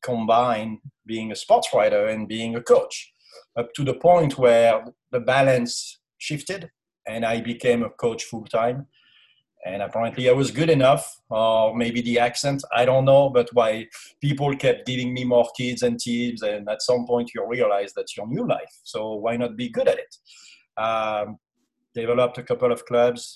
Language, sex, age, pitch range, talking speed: English, male, 40-59, 110-145 Hz, 180 wpm